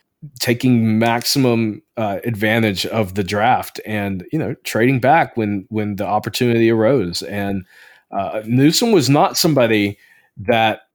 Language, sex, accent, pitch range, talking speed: English, male, American, 110-135 Hz, 130 wpm